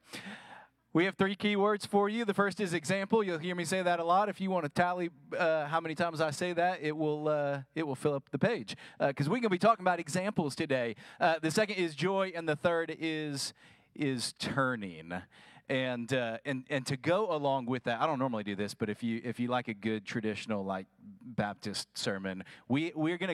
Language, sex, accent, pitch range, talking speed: English, male, American, 110-170 Hz, 225 wpm